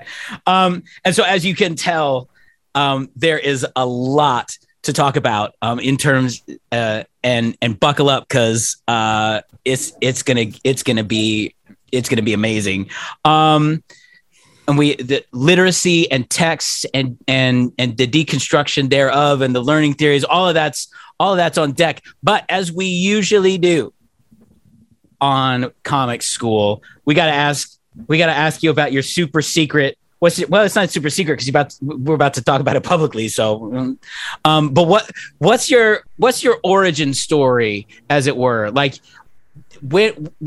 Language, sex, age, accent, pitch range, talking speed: English, male, 40-59, American, 130-175 Hz, 165 wpm